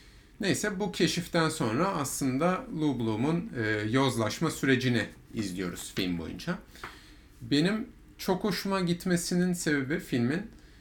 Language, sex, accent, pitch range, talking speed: Turkish, male, native, 115-155 Hz, 105 wpm